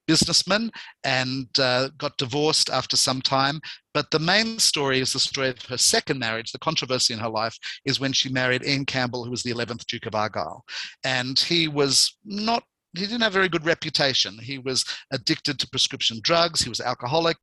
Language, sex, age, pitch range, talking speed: English, male, 50-69, 125-150 Hz, 195 wpm